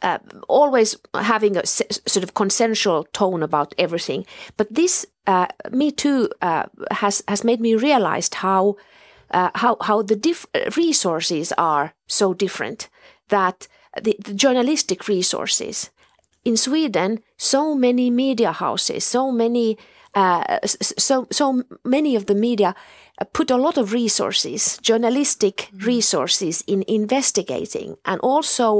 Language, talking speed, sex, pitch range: Finnish, 130 wpm, female, 205-280 Hz